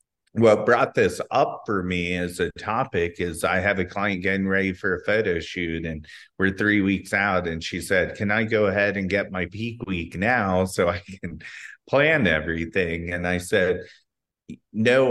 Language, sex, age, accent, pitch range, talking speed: English, male, 30-49, American, 90-105 Hz, 185 wpm